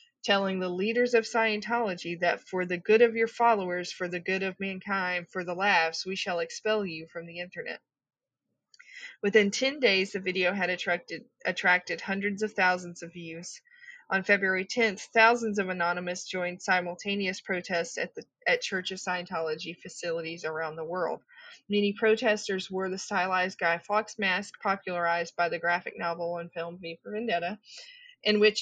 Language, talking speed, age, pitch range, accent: English, 165 wpm, 20-39, 175-210 Hz, American